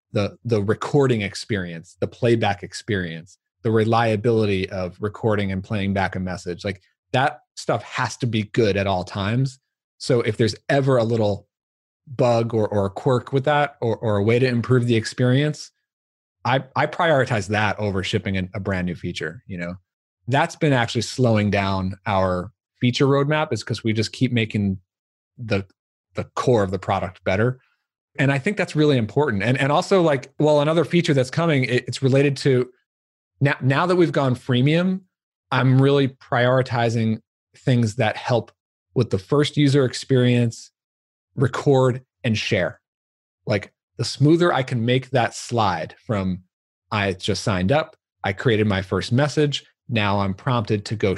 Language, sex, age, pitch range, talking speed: English, male, 30-49, 100-135 Hz, 170 wpm